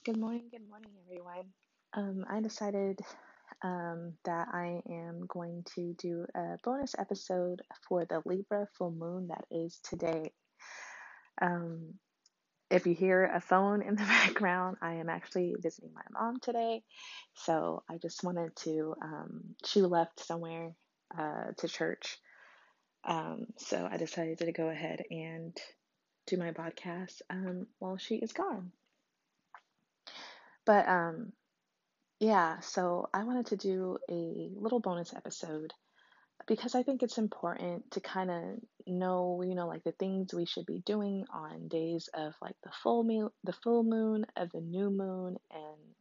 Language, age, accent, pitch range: English, 20-39, American, 170-210 Hz